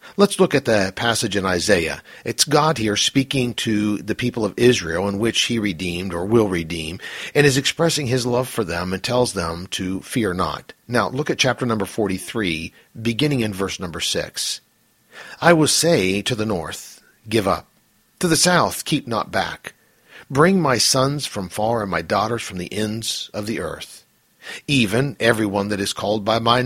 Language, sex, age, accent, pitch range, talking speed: English, male, 50-69, American, 100-130 Hz, 185 wpm